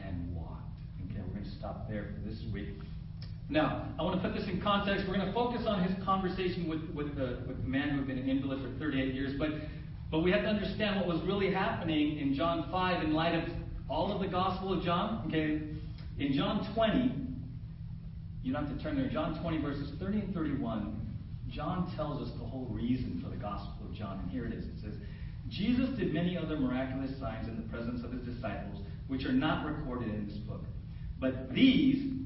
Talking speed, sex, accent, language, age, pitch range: 210 wpm, male, American, English, 40-59, 130-195 Hz